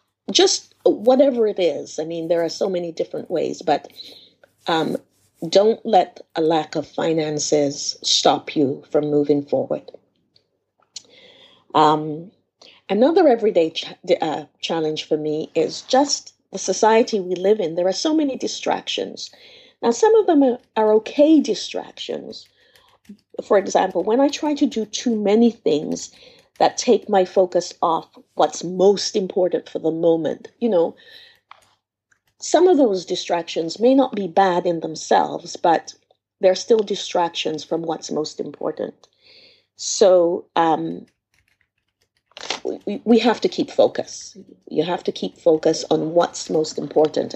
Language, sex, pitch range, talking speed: English, female, 165-275 Hz, 140 wpm